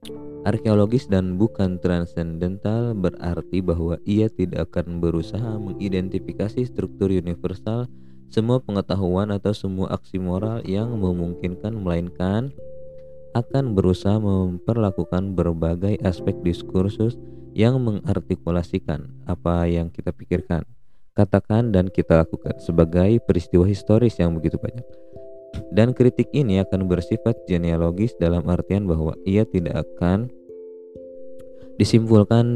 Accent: native